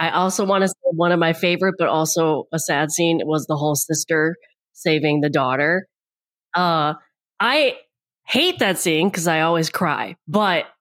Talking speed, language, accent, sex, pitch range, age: 170 wpm, English, American, female, 160-195 Hz, 20-39